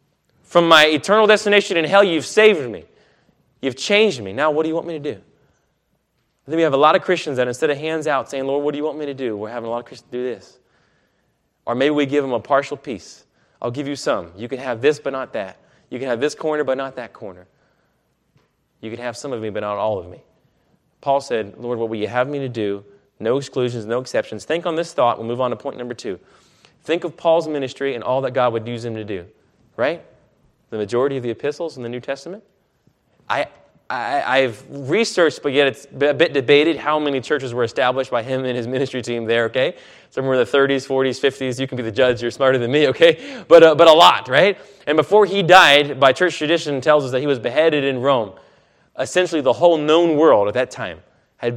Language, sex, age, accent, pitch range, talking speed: English, male, 20-39, American, 120-155 Hz, 240 wpm